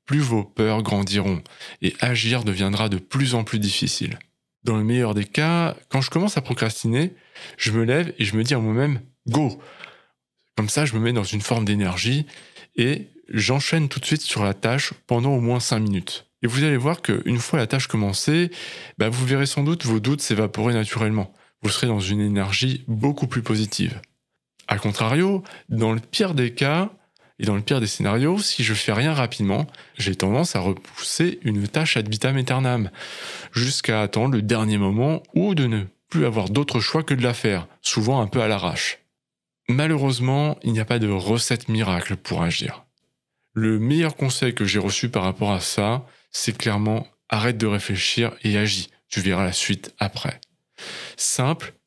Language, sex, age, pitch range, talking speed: French, male, 20-39, 105-140 Hz, 190 wpm